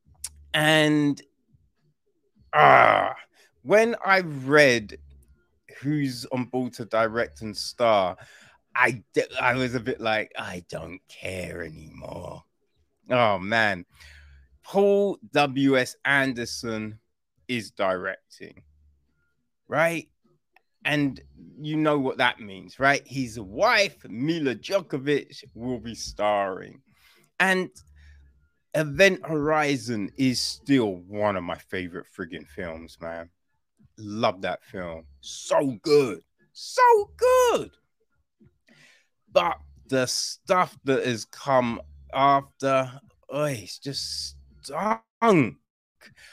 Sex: male